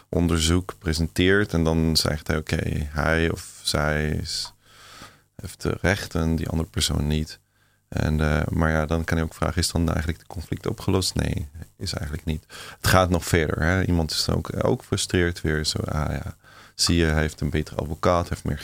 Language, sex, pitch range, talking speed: Dutch, male, 80-95 Hz, 200 wpm